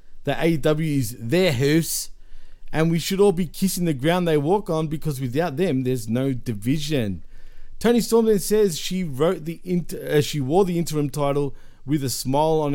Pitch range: 130-170 Hz